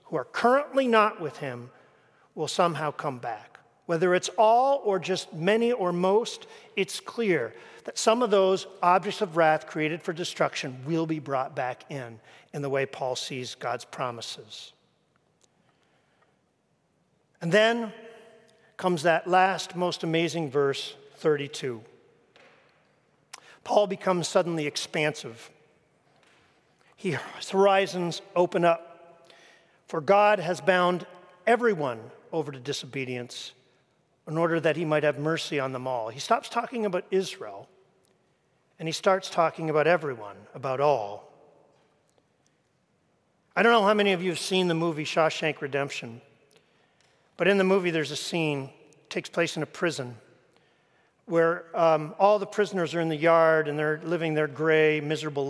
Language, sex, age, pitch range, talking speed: English, male, 50-69, 150-190 Hz, 140 wpm